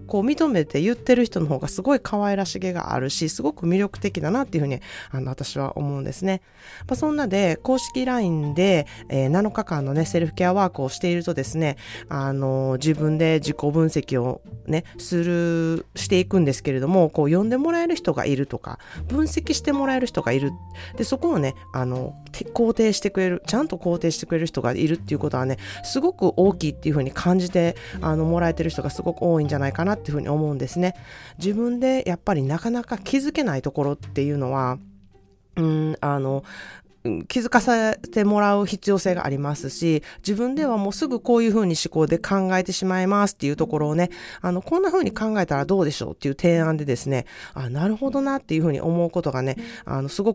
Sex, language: female, Japanese